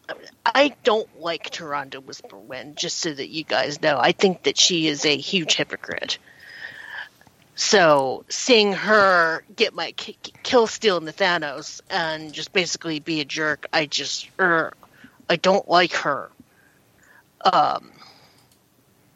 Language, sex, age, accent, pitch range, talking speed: English, female, 30-49, American, 160-200 Hz, 135 wpm